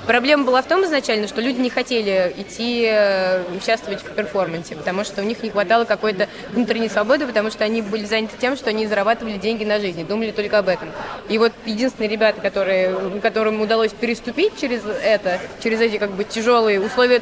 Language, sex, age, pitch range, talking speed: Russian, female, 20-39, 200-230 Hz, 180 wpm